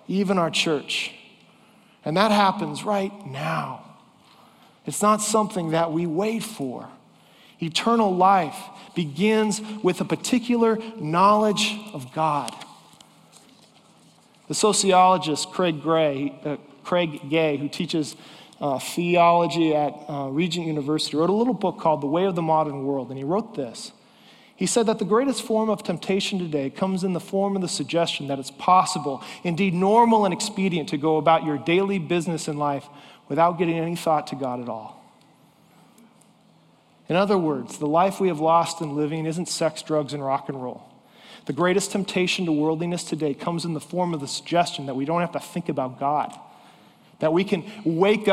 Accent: American